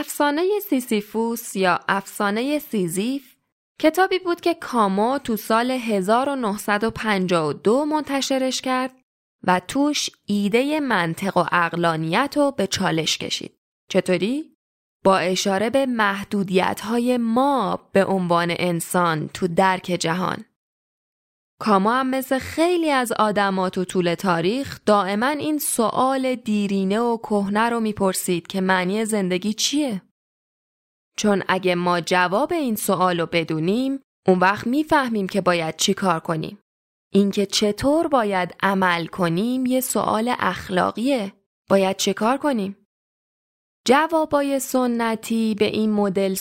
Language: Persian